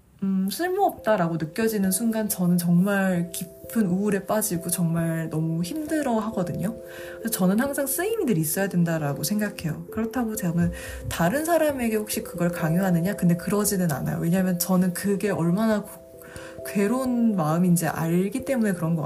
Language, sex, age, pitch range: Korean, female, 20-39, 165-220 Hz